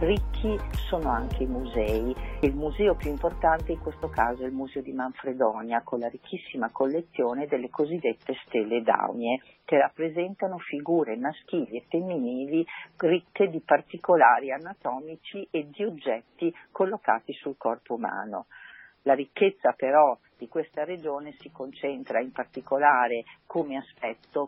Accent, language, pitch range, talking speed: native, Italian, 130-170 Hz, 130 wpm